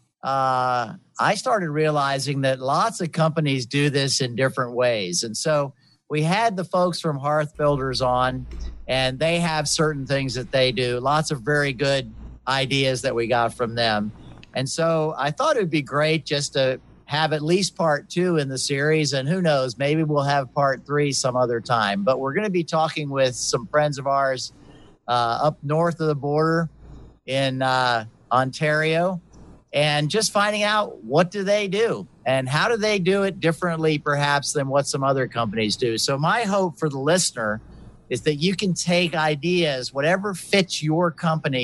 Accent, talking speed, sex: American, 185 wpm, male